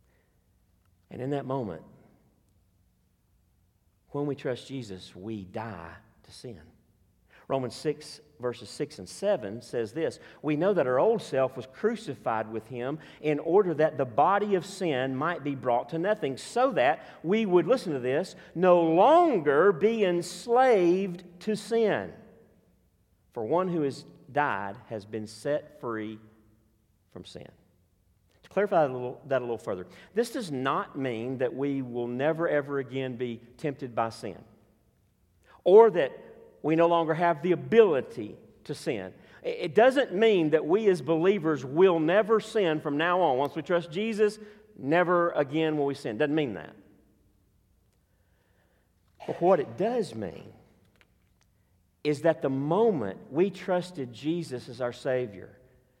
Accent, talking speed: American, 145 wpm